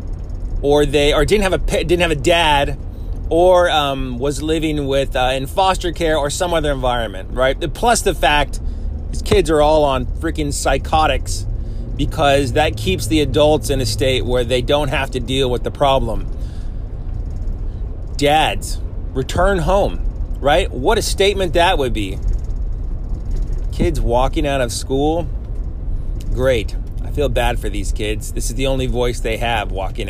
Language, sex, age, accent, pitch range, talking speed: English, male, 30-49, American, 95-140 Hz, 160 wpm